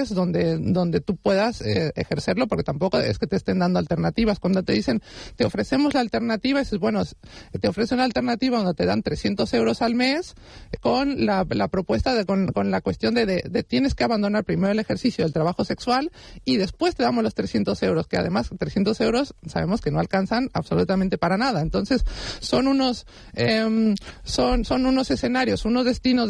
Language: Spanish